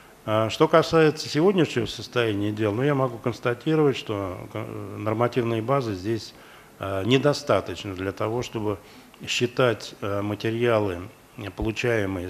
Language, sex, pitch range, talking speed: Russian, male, 105-140 Hz, 100 wpm